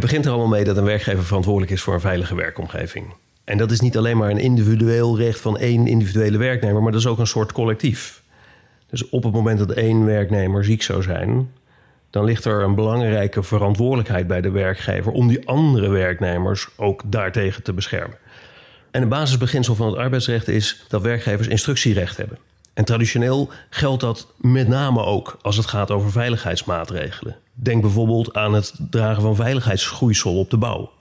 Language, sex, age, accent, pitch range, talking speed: Dutch, male, 30-49, Dutch, 100-120 Hz, 180 wpm